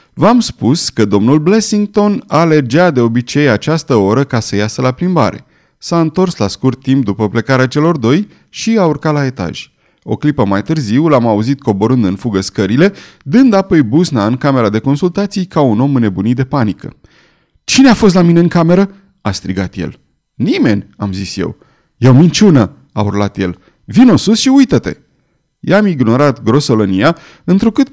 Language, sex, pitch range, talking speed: Romanian, male, 110-175 Hz, 170 wpm